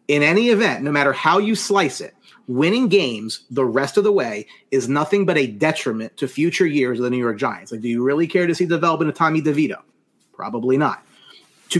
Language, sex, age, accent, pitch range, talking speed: English, male, 30-49, American, 135-195 Hz, 225 wpm